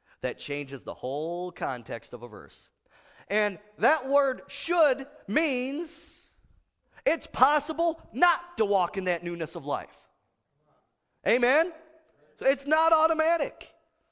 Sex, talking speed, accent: male, 115 wpm, American